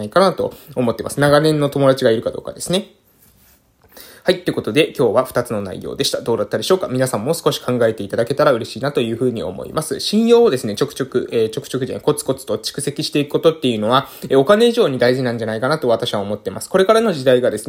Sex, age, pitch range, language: male, 20-39, 130-195 Hz, Japanese